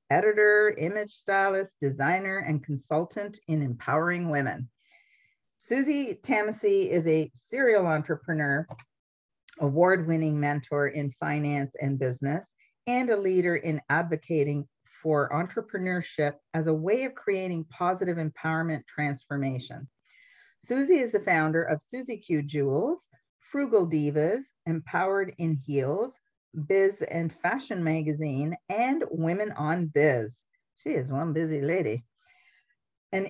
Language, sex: English, female